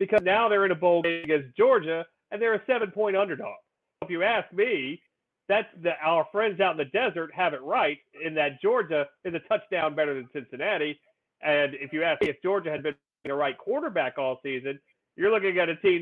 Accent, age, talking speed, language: American, 40-59, 205 wpm, English